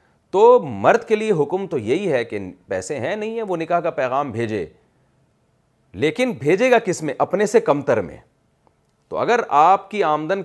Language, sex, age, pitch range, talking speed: Urdu, male, 40-59, 135-180 Hz, 190 wpm